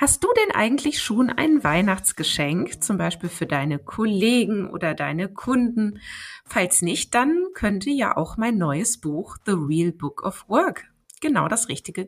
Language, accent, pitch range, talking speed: German, German, 175-240 Hz, 160 wpm